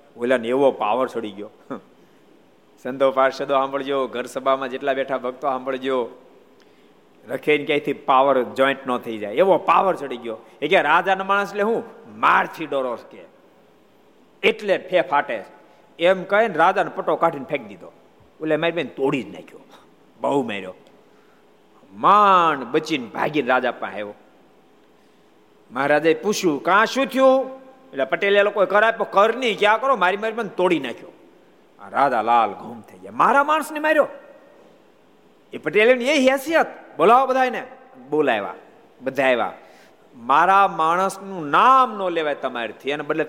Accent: native